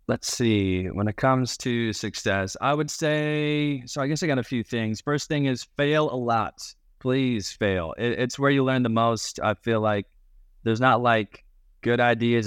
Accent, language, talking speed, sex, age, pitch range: American, English, 195 wpm, male, 20-39, 95-115 Hz